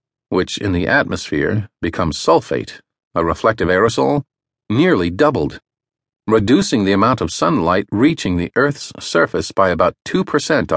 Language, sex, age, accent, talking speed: English, male, 50-69, American, 130 wpm